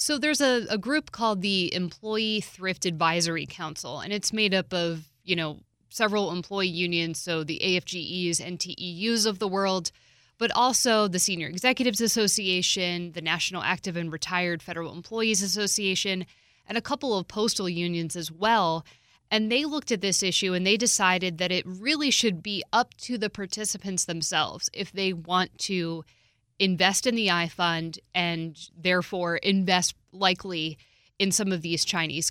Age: 20-39